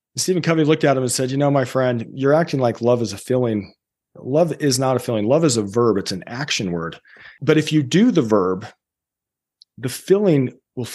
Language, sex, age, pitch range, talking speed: English, male, 40-59, 120-150 Hz, 220 wpm